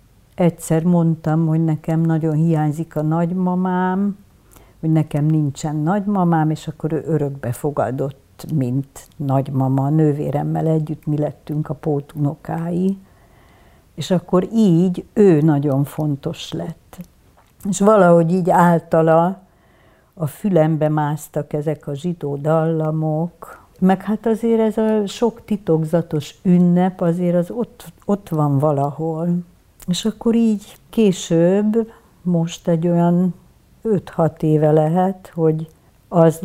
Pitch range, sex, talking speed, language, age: 150-175 Hz, female, 115 wpm, Hungarian, 60-79